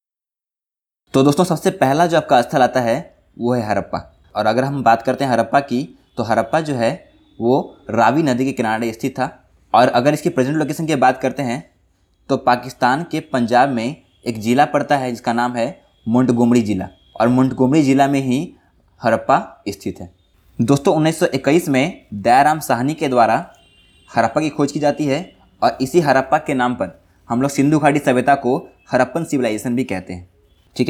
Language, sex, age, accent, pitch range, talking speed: Hindi, male, 20-39, native, 120-150 Hz, 180 wpm